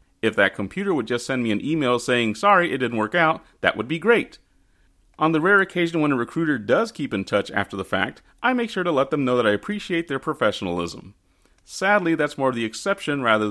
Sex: male